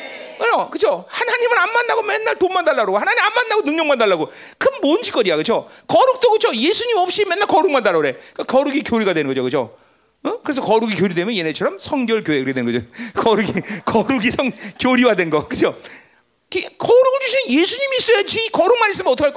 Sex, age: male, 40-59